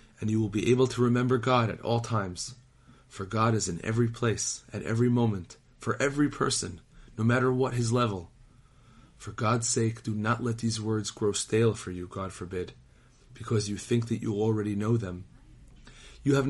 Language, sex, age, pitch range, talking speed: English, male, 40-59, 105-125 Hz, 190 wpm